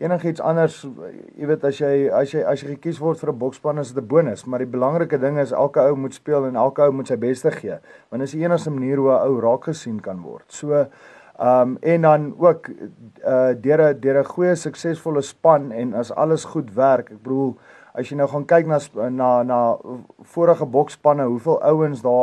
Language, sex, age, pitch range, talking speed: English, male, 30-49, 125-150 Hz, 205 wpm